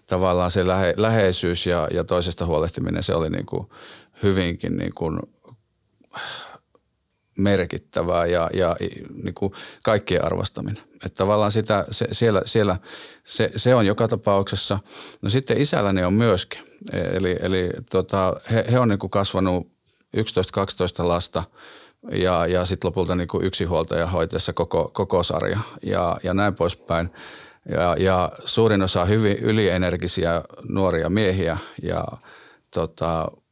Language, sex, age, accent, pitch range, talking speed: Finnish, male, 40-59, native, 90-110 Hz, 125 wpm